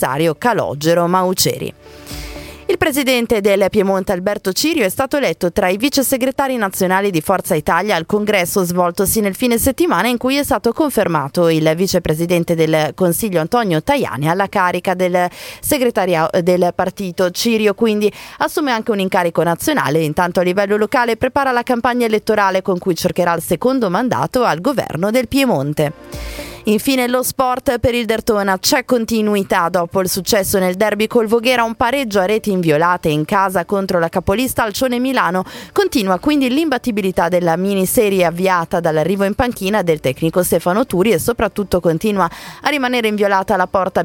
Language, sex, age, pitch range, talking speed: Italian, female, 30-49, 180-240 Hz, 160 wpm